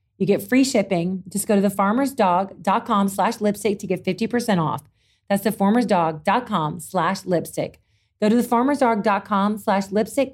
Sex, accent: female, American